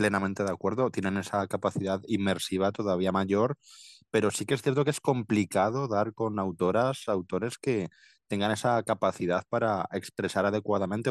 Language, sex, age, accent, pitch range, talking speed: Spanish, male, 20-39, Spanish, 95-115 Hz, 150 wpm